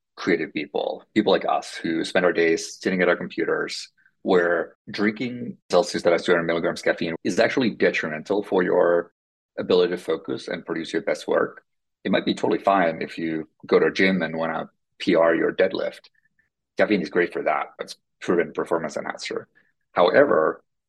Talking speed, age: 180 wpm, 30-49